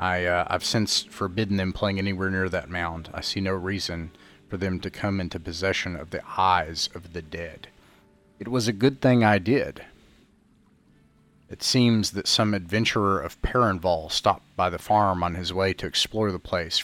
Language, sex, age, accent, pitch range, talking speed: English, male, 30-49, American, 85-105 Hz, 185 wpm